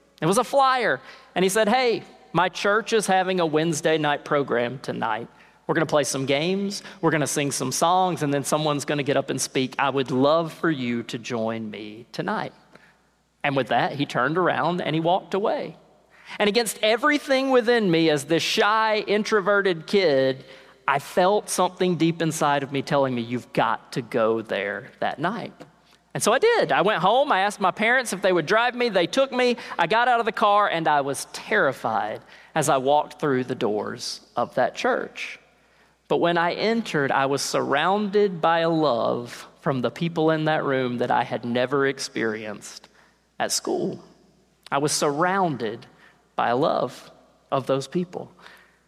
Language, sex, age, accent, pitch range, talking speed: English, male, 40-59, American, 135-200 Hz, 190 wpm